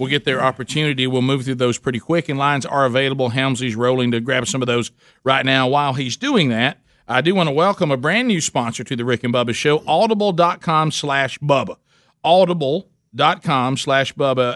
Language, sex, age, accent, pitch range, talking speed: English, male, 50-69, American, 125-150 Hz, 195 wpm